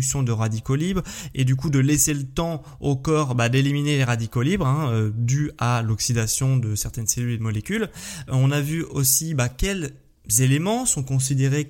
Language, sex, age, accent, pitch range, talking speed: French, male, 20-39, French, 120-145 Hz, 190 wpm